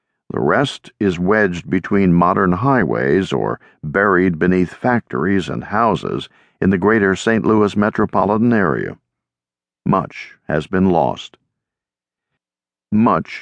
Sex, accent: male, American